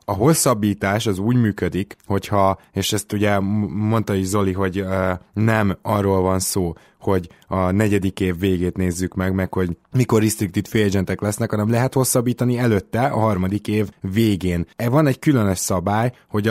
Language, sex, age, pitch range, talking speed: Hungarian, male, 20-39, 95-110 Hz, 165 wpm